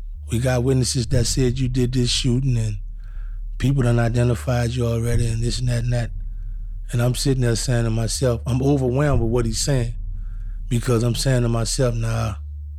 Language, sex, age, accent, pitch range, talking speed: English, male, 20-39, American, 95-120 Hz, 190 wpm